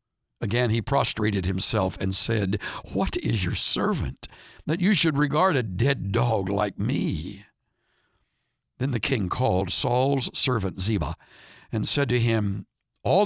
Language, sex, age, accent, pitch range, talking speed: English, male, 60-79, American, 105-160 Hz, 140 wpm